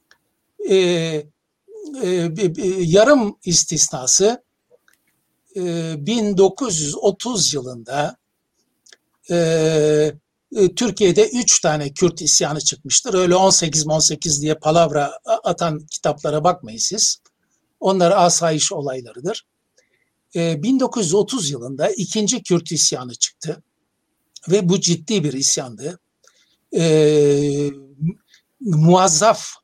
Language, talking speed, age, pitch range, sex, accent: Turkish, 85 wpm, 60-79, 155-210 Hz, male, native